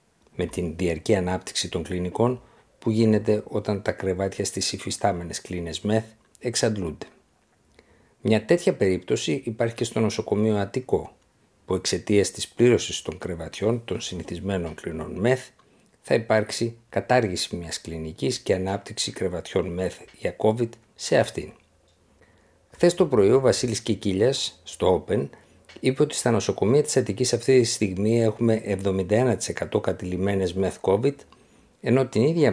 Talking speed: 135 wpm